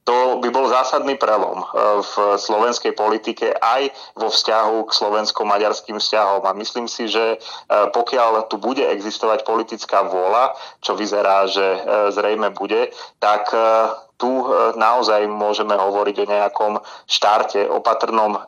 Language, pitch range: Slovak, 100-110 Hz